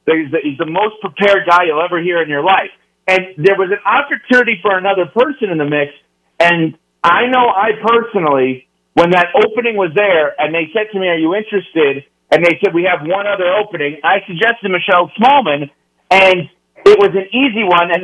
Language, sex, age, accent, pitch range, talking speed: English, male, 40-59, American, 160-205 Hz, 195 wpm